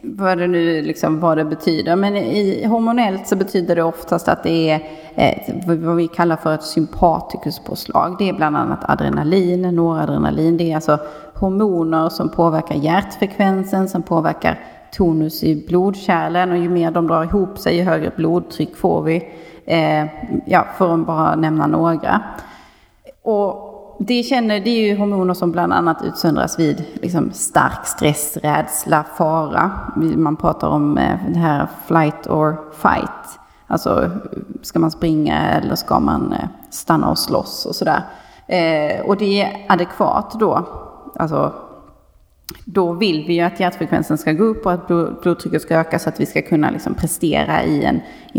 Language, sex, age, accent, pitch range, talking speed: Swedish, female, 30-49, native, 160-190 Hz, 155 wpm